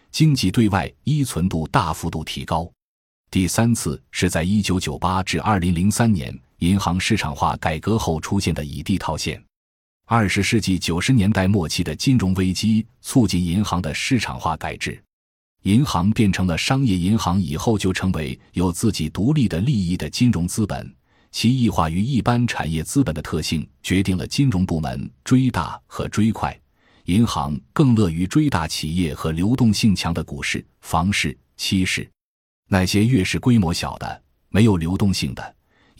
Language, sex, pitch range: Chinese, male, 80-110 Hz